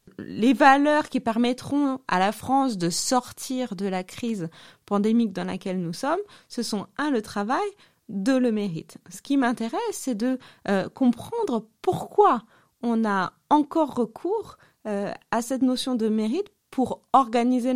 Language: French